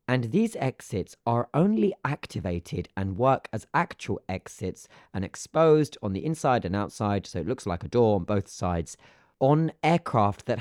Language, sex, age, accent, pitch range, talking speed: English, male, 30-49, British, 95-130 Hz, 170 wpm